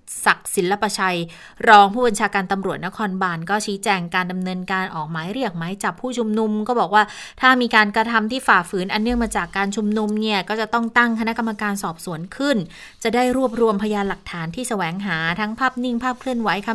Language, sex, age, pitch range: Thai, female, 20-39, 175-220 Hz